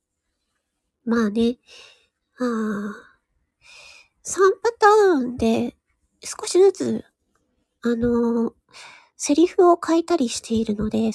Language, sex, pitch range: Japanese, female, 235-330 Hz